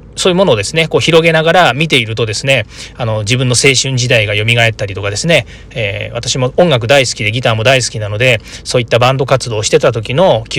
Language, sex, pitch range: Japanese, male, 115-160 Hz